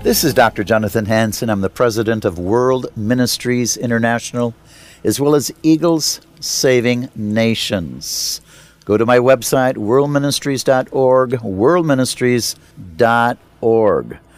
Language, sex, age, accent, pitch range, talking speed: English, male, 60-79, American, 120-145 Hz, 100 wpm